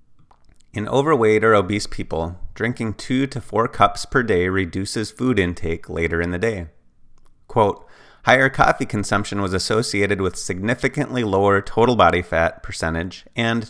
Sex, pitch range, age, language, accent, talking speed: male, 85-115 Hz, 30-49, English, American, 145 wpm